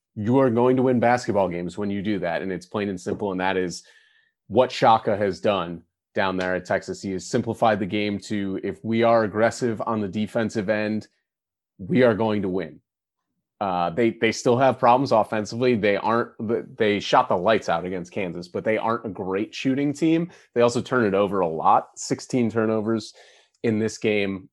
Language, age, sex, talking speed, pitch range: English, 30-49, male, 195 wpm, 95-120 Hz